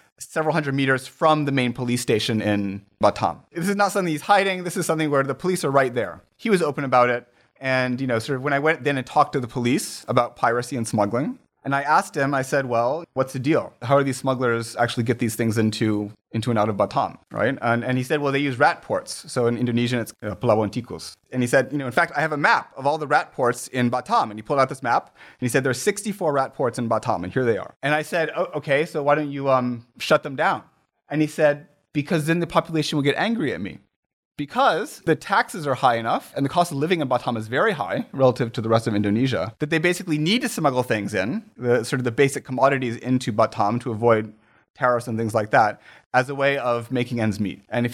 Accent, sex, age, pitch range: American, male, 30-49, 120-150 Hz